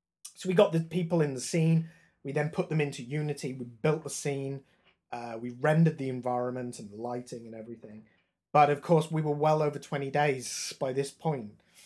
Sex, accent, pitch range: male, British, 120-155 Hz